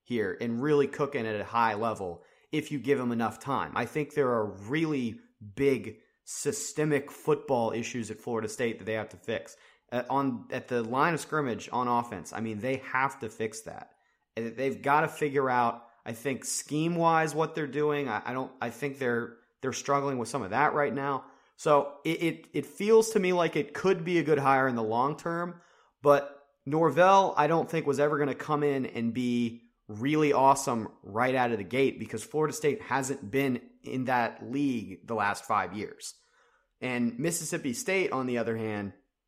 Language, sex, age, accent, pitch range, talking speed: English, male, 30-49, American, 120-150 Hz, 200 wpm